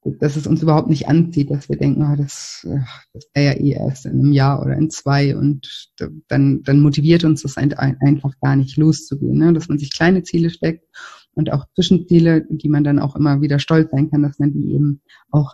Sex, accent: female, German